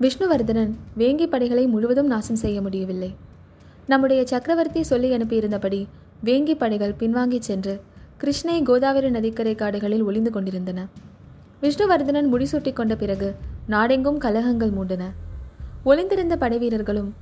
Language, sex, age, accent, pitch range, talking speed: Tamil, female, 20-39, native, 200-250 Hz, 110 wpm